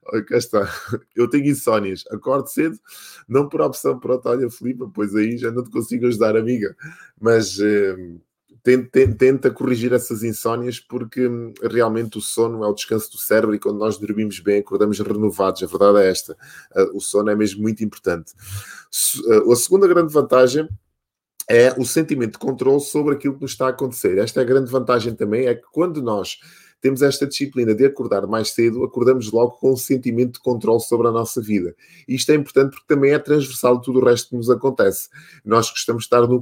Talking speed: 190 wpm